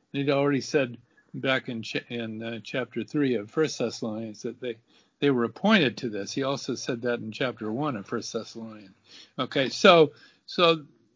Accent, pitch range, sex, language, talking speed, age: American, 120-165 Hz, male, English, 170 wpm, 50-69